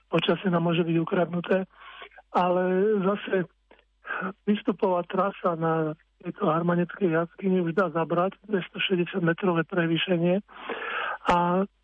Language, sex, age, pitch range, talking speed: Slovak, male, 50-69, 175-195 Hz, 95 wpm